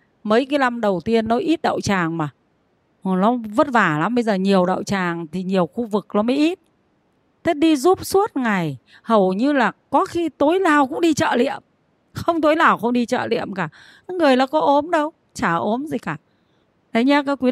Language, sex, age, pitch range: Vietnamese, female, 20-39, 190-260 Hz